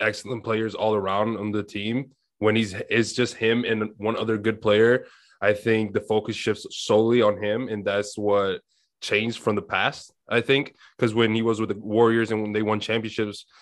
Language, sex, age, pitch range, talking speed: English, male, 20-39, 105-115 Hz, 205 wpm